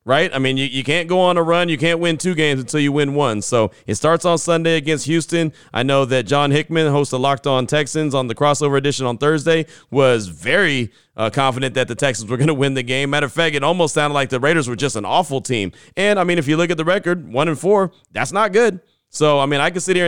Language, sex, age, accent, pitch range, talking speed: English, male, 30-49, American, 120-155 Hz, 270 wpm